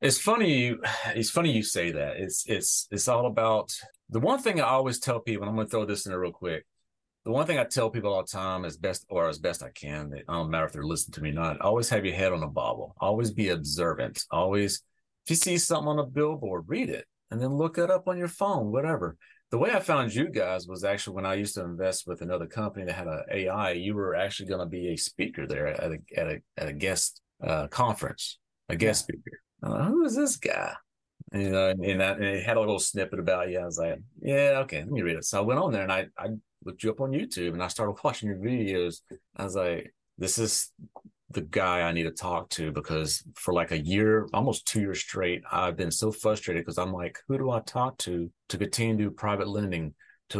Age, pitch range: 40-59, 90-115 Hz